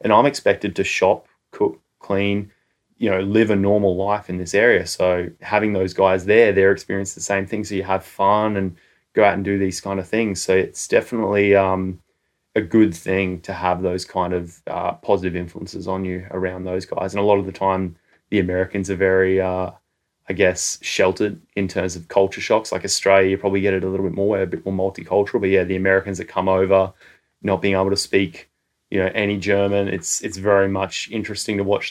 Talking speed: 215 wpm